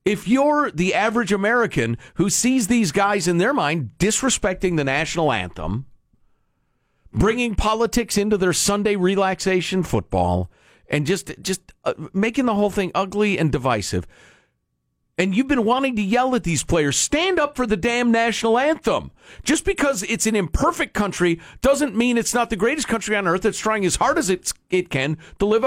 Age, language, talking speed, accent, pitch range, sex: 50-69, English, 175 wpm, American, 170-245 Hz, male